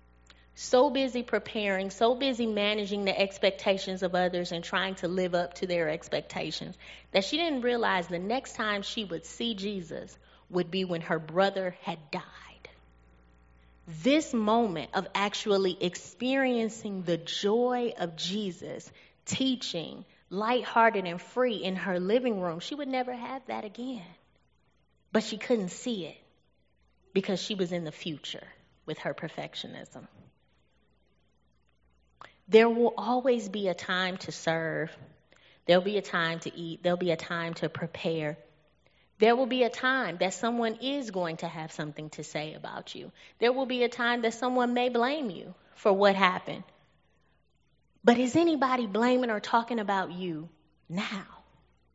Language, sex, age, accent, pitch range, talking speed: English, female, 20-39, American, 170-235 Hz, 150 wpm